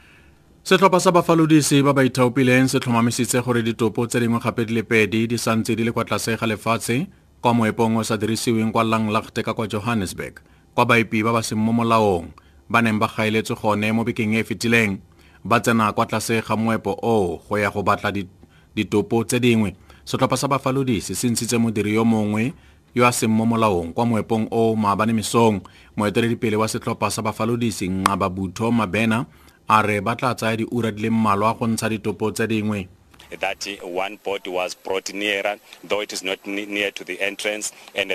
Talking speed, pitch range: 155 wpm, 100-115 Hz